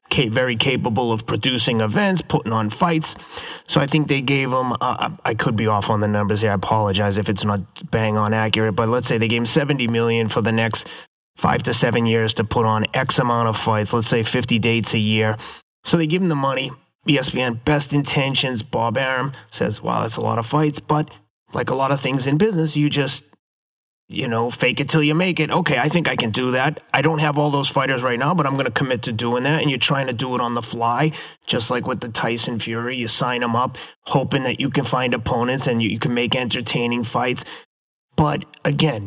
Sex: male